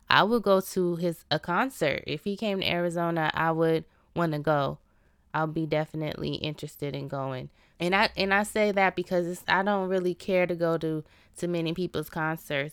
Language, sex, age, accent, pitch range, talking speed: English, female, 20-39, American, 150-180 Hz, 200 wpm